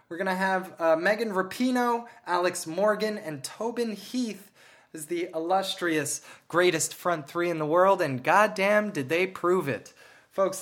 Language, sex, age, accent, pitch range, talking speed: English, male, 20-39, American, 150-195 Hz, 160 wpm